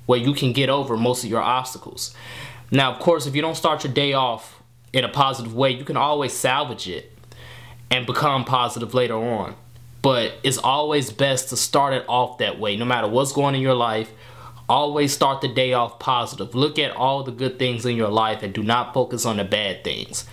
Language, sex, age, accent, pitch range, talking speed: English, male, 20-39, American, 120-140 Hz, 220 wpm